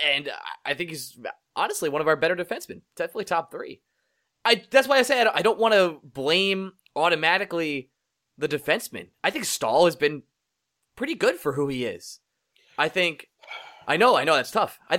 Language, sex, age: English, male, 20-39